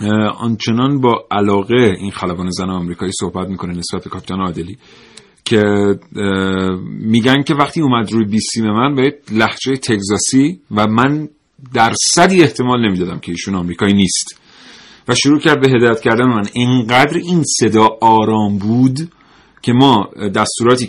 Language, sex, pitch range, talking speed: Persian, male, 105-135 Hz, 135 wpm